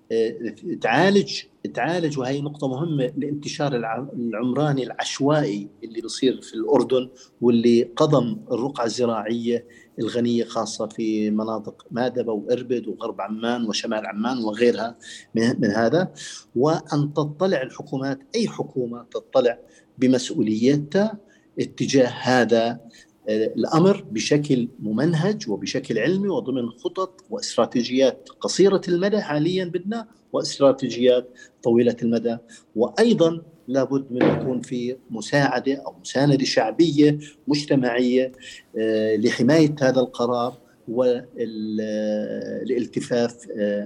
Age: 50-69